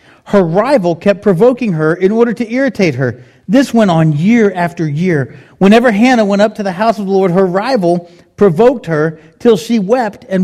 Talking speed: 195 wpm